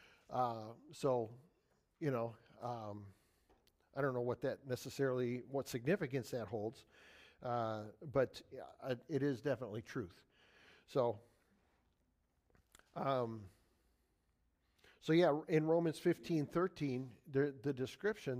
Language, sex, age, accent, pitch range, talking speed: English, male, 50-69, American, 125-155 Hz, 110 wpm